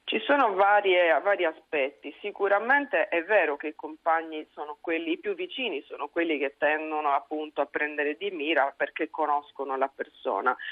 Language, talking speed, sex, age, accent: Italian, 160 wpm, female, 40-59, native